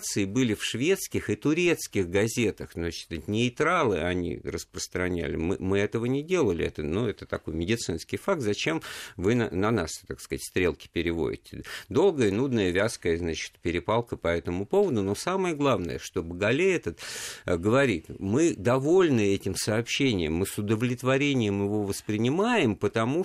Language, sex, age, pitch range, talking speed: Russian, male, 50-69, 95-115 Hz, 140 wpm